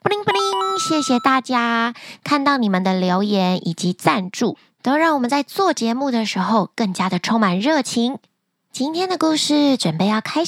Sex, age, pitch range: female, 20-39, 200-285 Hz